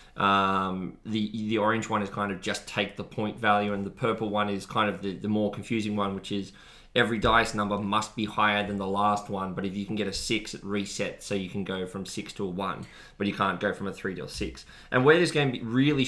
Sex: male